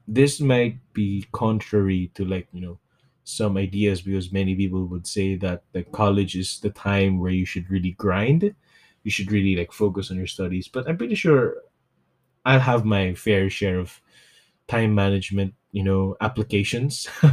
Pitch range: 100-130 Hz